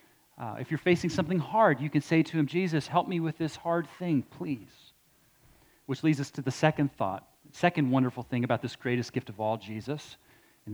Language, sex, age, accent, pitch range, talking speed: English, male, 30-49, American, 135-175 Hz, 205 wpm